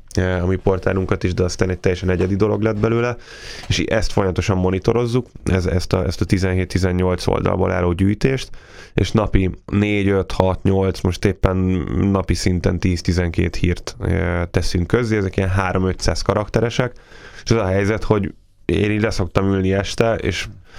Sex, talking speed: male, 145 wpm